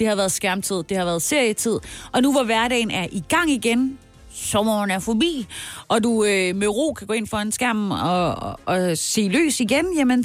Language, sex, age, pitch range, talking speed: Danish, female, 30-49, 170-235 Hz, 215 wpm